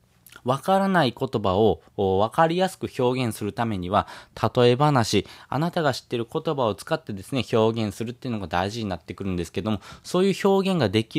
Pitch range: 105-150 Hz